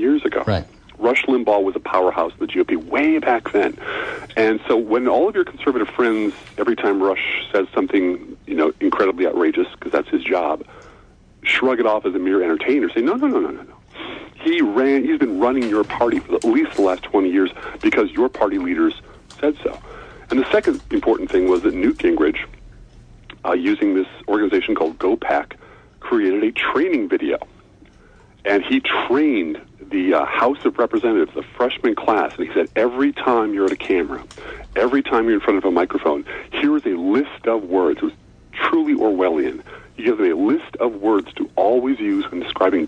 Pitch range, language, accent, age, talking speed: 310-370 Hz, English, American, 40-59, 185 wpm